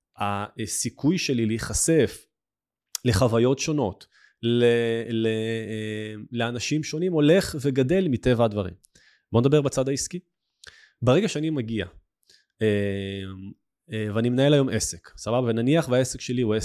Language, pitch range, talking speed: Hebrew, 110-145 Hz, 110 wpm